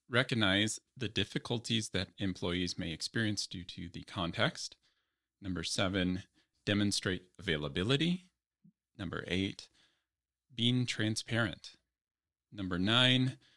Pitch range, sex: 90-120 Hz, male